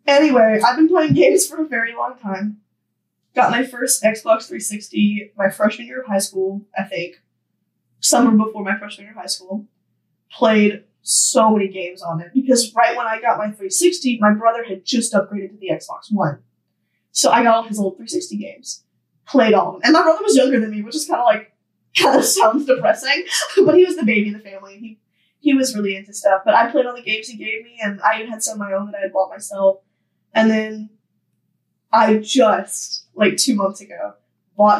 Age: 10-29